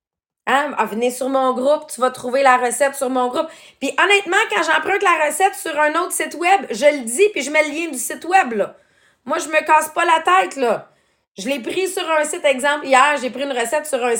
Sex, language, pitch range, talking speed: female, English, 220-305 Hz, 260 wpm